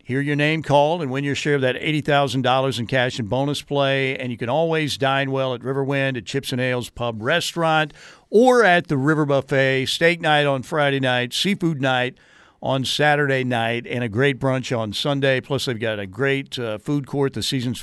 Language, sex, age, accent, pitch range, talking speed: English, male, 50-69, American, 125-165 Hz, 205 wpm